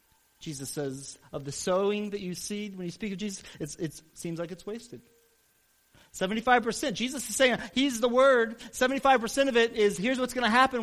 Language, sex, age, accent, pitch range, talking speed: English, male, 40-59, American, 140-230 Hz, 195 wpm